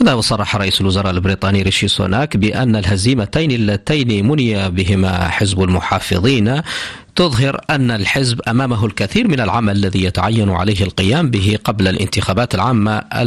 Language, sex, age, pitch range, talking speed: Arabic, male, 40-59, 100-125 Hz, 130 wpm